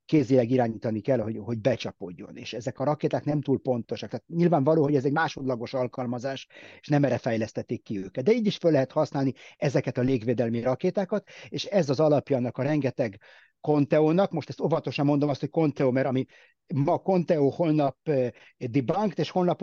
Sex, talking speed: male, 175 wpm